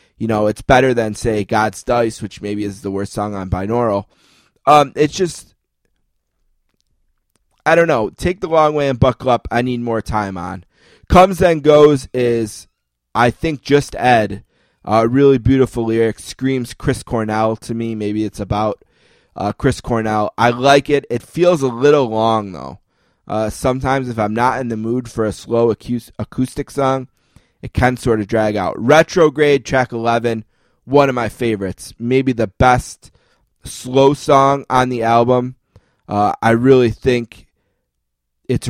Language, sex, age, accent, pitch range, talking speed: English, male, 20-39, American, 105-125 Hz, 165 wpm